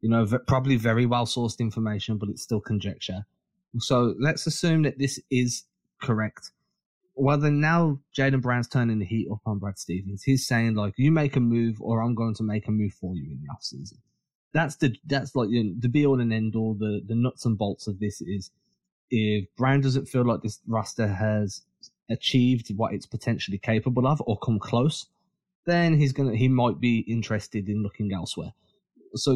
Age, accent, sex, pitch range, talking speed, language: 20-39, British, male, 110-135 Hz, 200 wpm, English